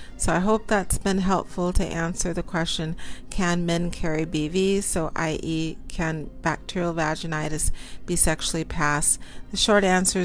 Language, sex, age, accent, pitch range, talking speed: English, female, 40-59, American, 160-190 Hz, 145 wpm